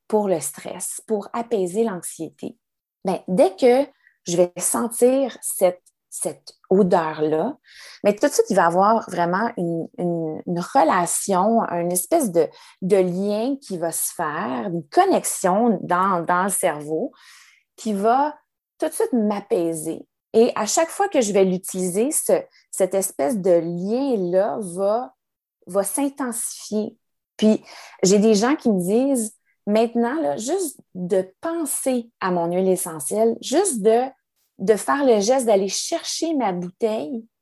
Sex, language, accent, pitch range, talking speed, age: female, French, Canadian, 185-250 Hz, 145 wpm, 30-49